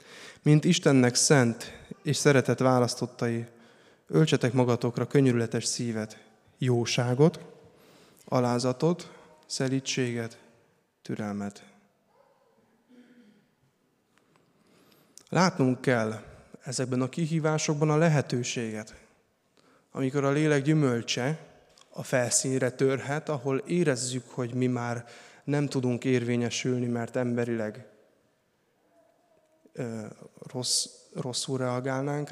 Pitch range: 125-155 Hz